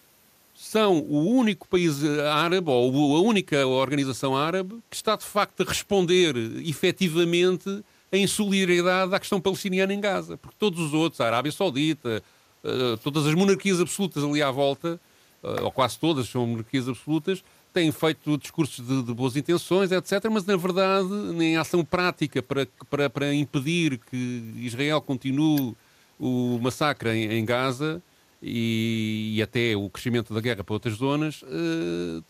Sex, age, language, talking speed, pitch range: male, 40-59, Portuguese, 150 wpm, 135-180 Hz